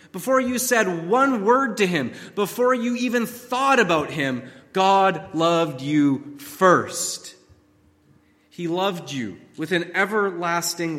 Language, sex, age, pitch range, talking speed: English, male, 30-49, 155-220 Hz, 125 wpm